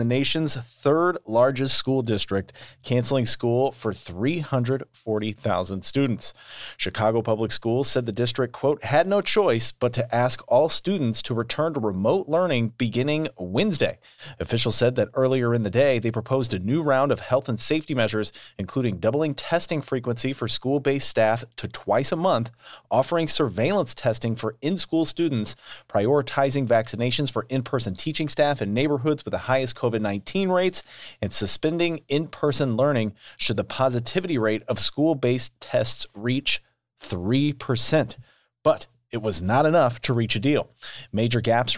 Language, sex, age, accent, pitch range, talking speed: English, male, 30-49, American, 115-140 Hz, 150 wpm